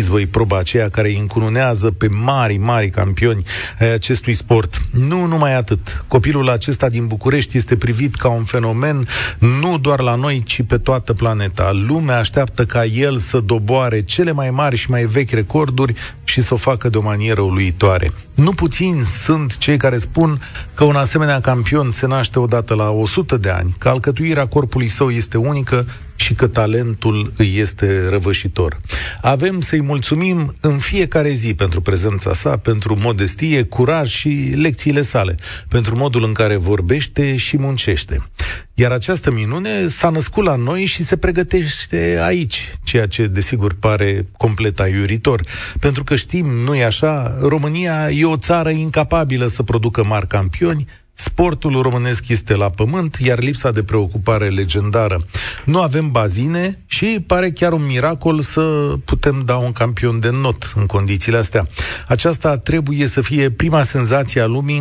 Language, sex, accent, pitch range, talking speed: Romanian, male, native, 105-145 Hz, 160 wpm